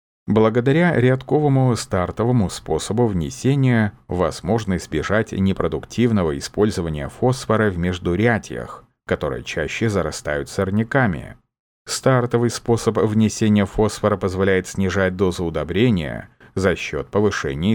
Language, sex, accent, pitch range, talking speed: Russian, male, native, 95-120 Hz, 90 wpm